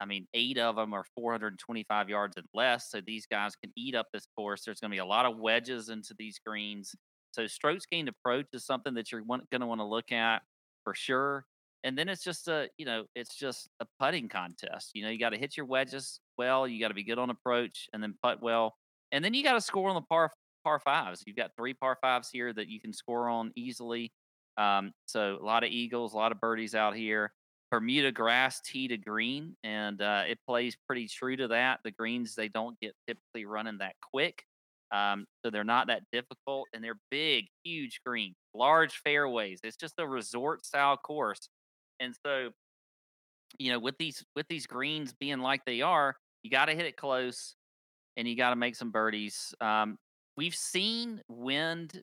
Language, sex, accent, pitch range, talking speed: English, male, American, 110-130 Hz, 210 wpm